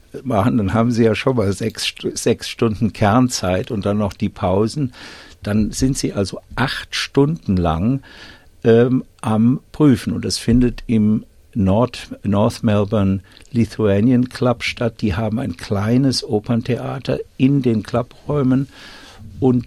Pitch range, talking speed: 95-120 Hz, 135 wpm